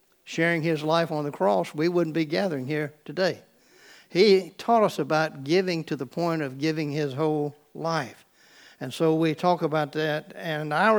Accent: American